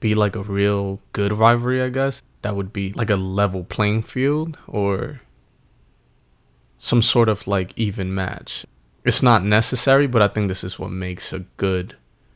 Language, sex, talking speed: English, male, 170 wpm